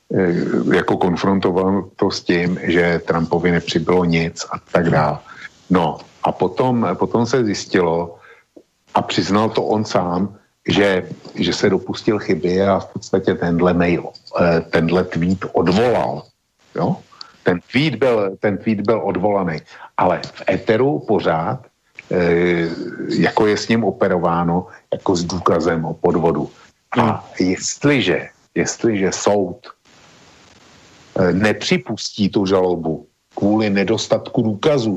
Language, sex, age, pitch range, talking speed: Slovak, male, 60-79, 85-110 Hz, 115 wpm